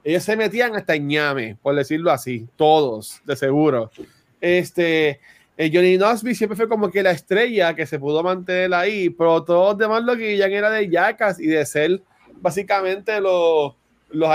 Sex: male